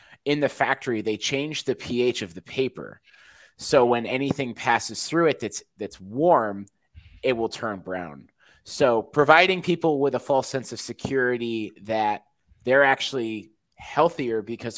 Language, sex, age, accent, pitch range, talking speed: English, male, 20-39, American, 100-130 Hz, 150 wpm